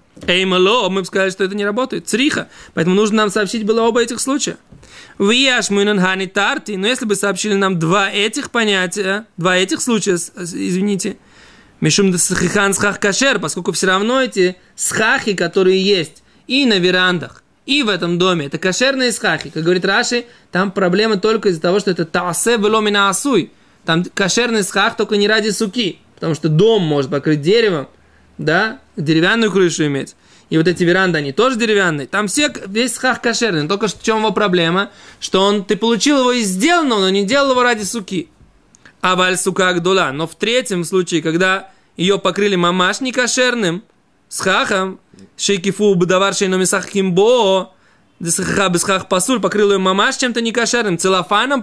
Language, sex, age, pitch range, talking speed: Russian, male, 20-39, 185-225 Hz, 150 wpm